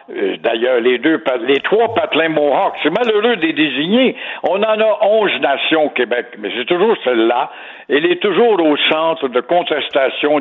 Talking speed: 180 wpm